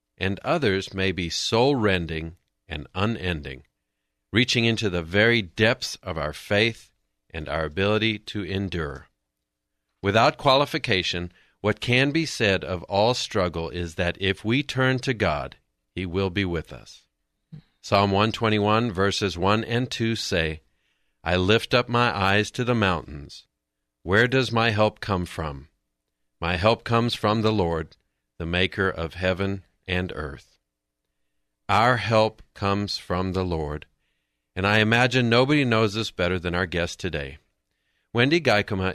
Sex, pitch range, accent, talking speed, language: male, 85-115 Hz, American, 145 wpm, English